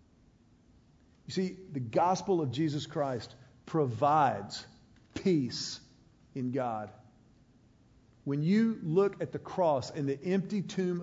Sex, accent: male, American